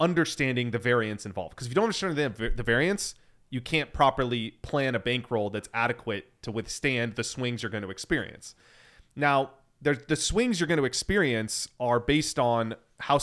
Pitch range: 110-140 Hz